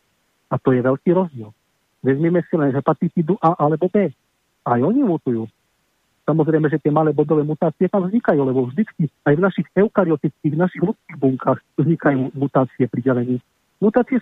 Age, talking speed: 40-59, 160 wpm